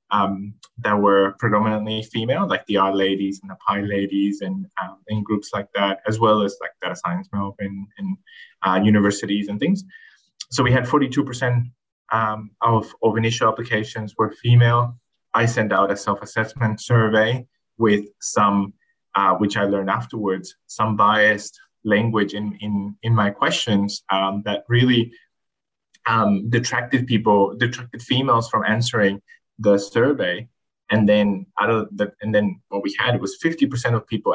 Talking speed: 155 wpm